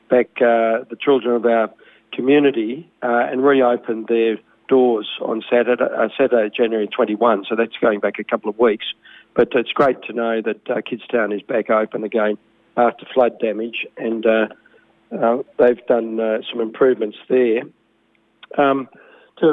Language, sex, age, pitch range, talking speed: English, male, 50-69, 110-120 Hz, 155 wpm